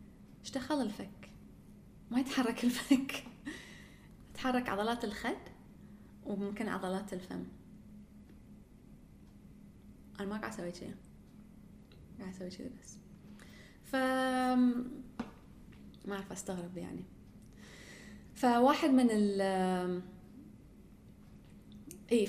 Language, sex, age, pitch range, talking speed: English, female, 20-39, 190-250 Hz, 80 wpm